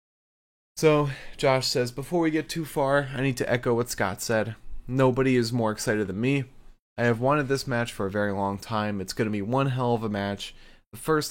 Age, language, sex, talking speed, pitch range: 20-39, English, male, 225 wpm, 100-130 Hz